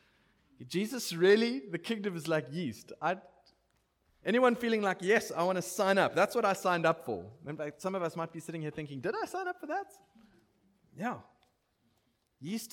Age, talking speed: 30-49, 180 wpm